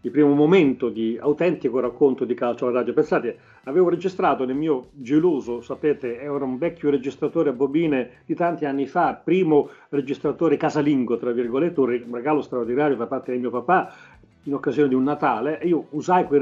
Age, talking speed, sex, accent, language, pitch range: 40-59, 180 wpm, male, native, Italian, 125-160 Hz